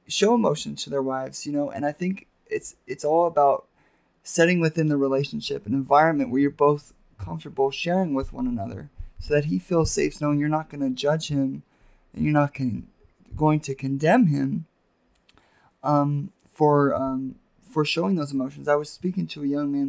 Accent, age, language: American, 20-39, English